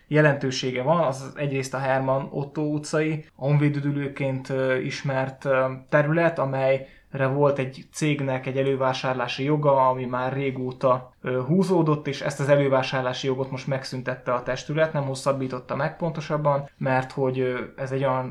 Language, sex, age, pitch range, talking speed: Hungarian, male, 20-39, 130-150 Hz, 130 wpm